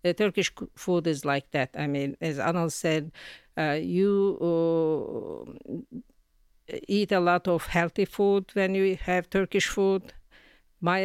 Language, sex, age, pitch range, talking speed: English, female, 50-69, 155-185 Hz, 135 wpm